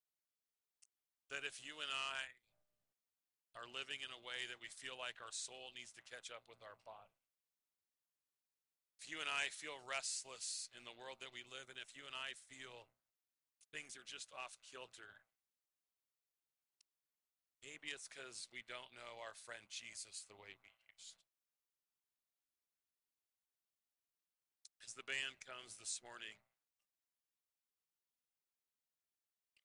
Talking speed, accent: 135 wpm, American